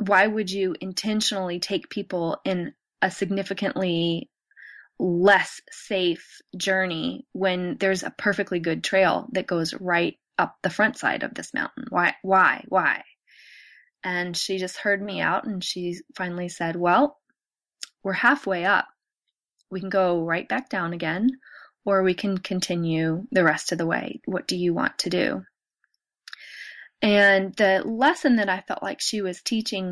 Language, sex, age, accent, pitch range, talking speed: English, female, 20-39, American, 180-215 Hz, 155 wpm